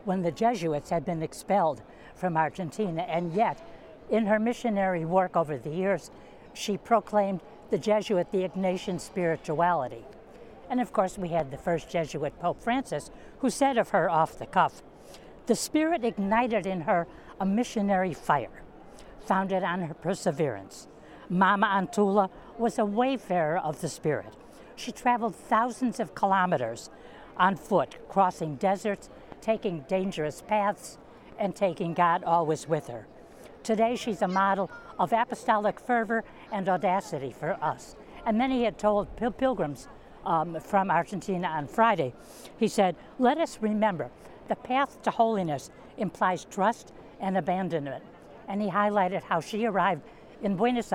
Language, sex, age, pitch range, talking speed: English, female, 60-79, 170-225 Hz, 145 wpm